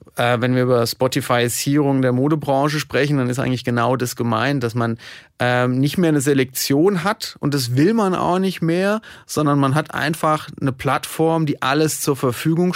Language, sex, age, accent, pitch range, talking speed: German, male, 30-49, German, 125-155 Hz, 180 wpm